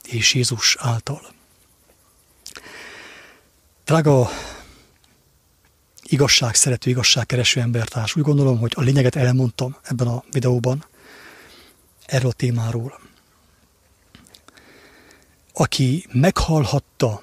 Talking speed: 75 wpm